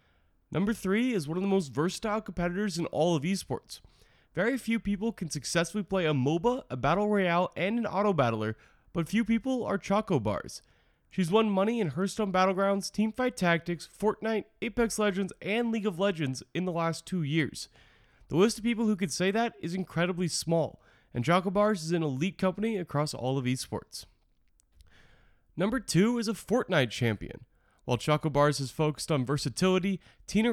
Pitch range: 145-205 Hz